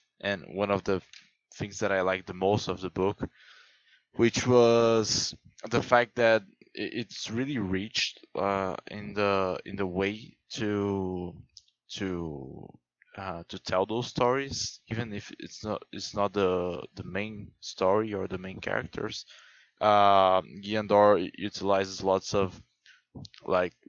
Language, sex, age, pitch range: English, male, 20-39, 95-105 Hz